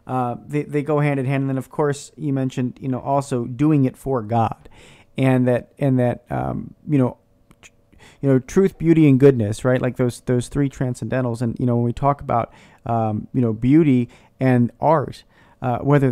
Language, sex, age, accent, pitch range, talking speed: English, male, 40-59, American, 115-145 Hz, 185 wpm